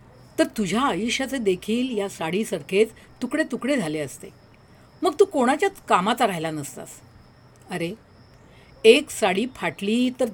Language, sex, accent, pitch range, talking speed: Marathi, female, native, 170-245 Hz, 105 wpm